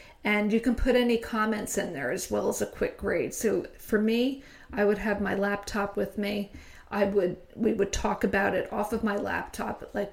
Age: 40-59